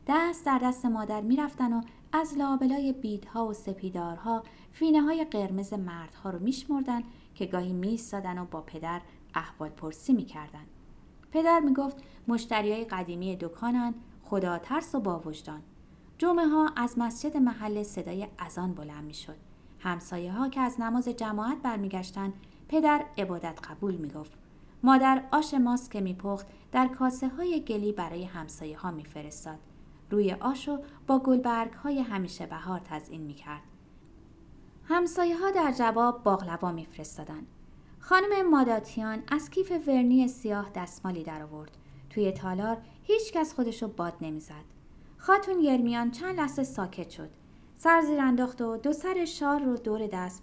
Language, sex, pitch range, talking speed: Persian, female, 180-265 Hz, 130 wpm